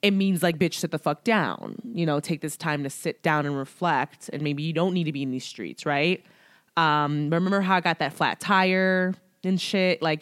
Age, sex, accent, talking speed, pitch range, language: 20-39, female, American, 235 wpm, 160-210 Hz, English